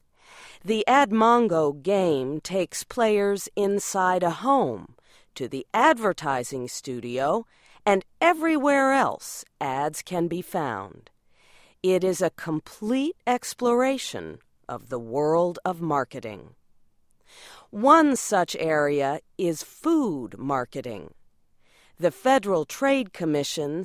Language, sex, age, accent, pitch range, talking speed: English, female, 50-69, American, 150-240 Hz, 100 wpm